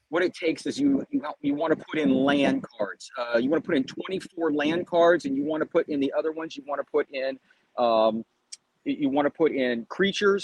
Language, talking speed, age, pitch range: English, 255 wpm, 40-59, 125-170 Hz